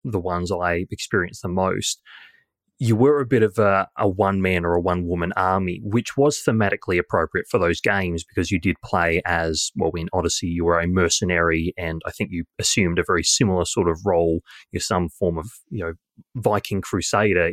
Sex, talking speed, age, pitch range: male, 190 wpm, 20-39, 85-105 Hz